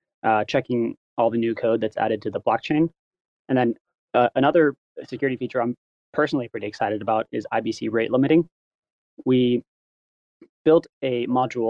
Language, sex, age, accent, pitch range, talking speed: English, male, 20-39, American, 115-135 Hz, 155 wpm